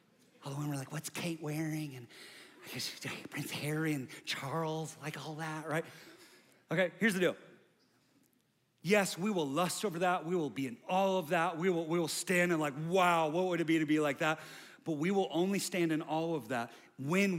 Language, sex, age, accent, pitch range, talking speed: English, male, 30-49, American, 160-235 Hz, 215 wpm